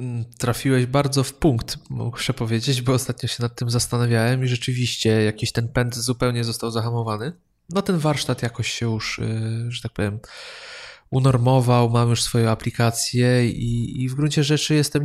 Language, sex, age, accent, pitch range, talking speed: Polish, male, 20-39, native, 115-145 Hz, 165 wpm